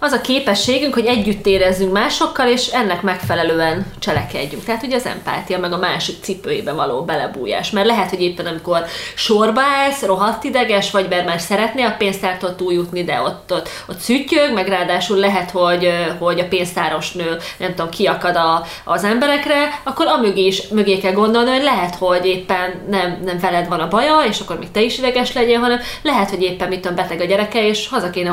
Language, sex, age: Hungarian, female, 30-49